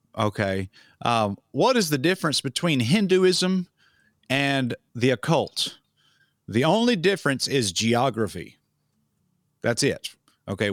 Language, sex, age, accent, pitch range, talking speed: English, male, 50-69, American, 110-150 Hz, 105 wpm